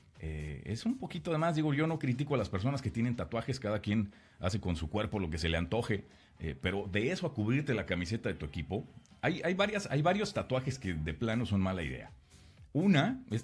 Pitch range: 85-115 Hz